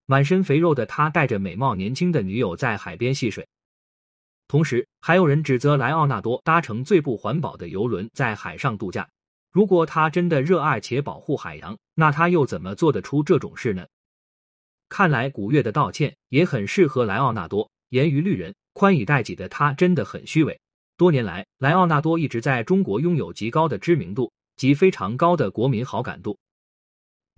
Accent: native